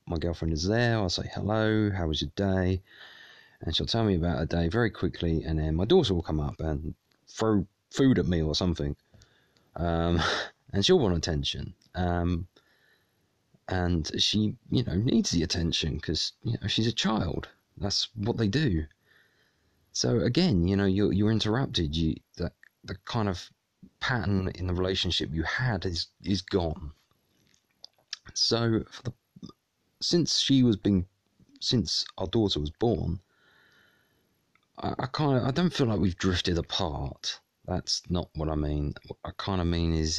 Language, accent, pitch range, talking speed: English, British, 80-100 Hz, 165 wpm